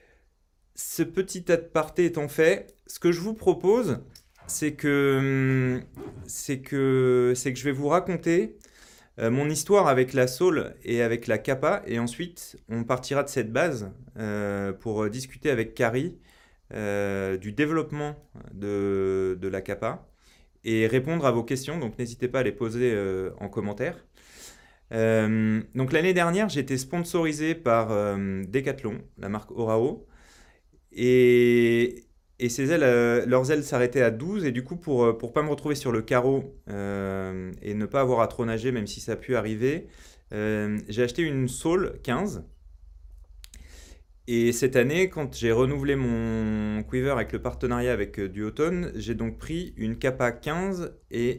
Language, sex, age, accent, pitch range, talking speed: French, male, 30-49, French, 105-140 Hz, 160 wpm